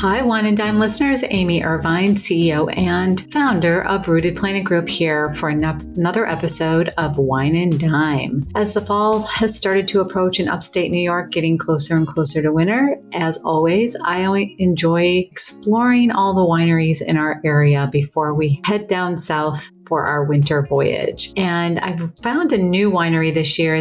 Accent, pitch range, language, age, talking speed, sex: American, 155-185 Hz, English, 40-59, 170 wpm, female